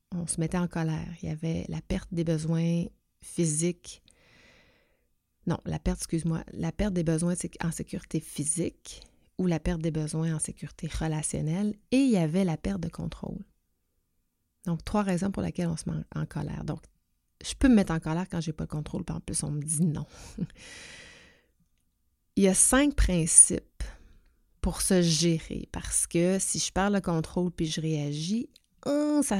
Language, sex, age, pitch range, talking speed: French, female, 30-49, 160-185 Hz, 180 wpm